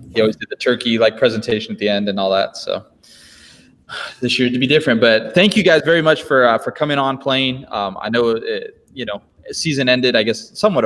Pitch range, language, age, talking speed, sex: 110-150 Hz, English, 20-39, 230 wpm, male